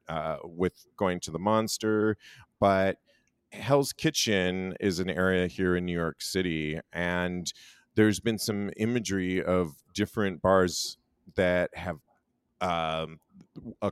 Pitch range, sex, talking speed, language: 85-105 Hz, male, 125 wpm, English